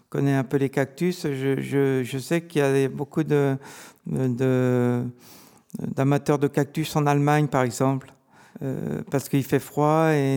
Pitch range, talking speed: 130-150 Hz, 175 wpm